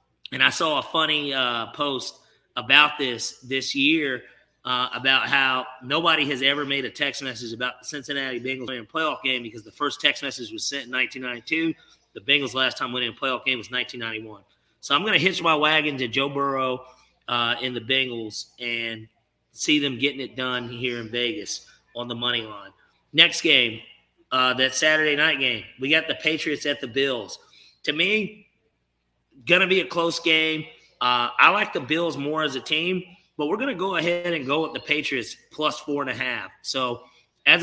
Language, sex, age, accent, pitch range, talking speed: English, male, 30-49, American, 125-150 Hz, 200 wpm